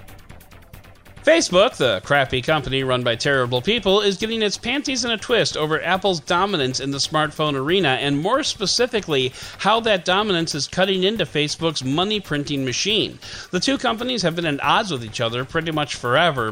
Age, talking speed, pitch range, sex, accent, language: 40-59, 170 wpm, 130-185 Hz, male, American, English